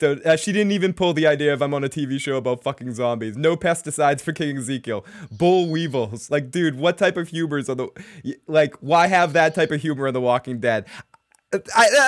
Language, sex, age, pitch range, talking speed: English, male, 20-39, 145-180 Hz, 210 wpm